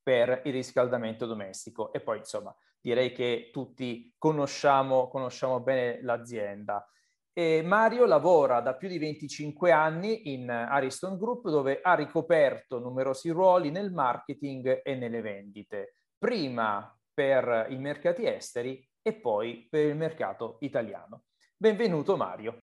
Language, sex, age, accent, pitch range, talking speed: Italian, male, 30-49, native, 115-145 Hz, 125 wpm